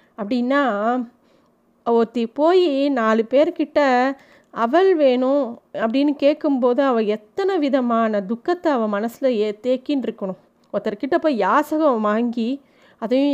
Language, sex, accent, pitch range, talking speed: Tamil, female, native, 225-275 Hz, 105 wpm